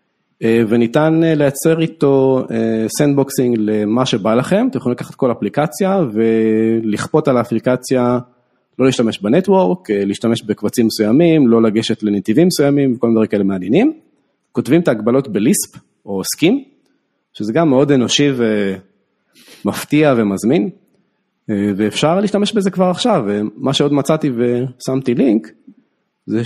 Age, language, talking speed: 30-49, Hebrew, 120 wpm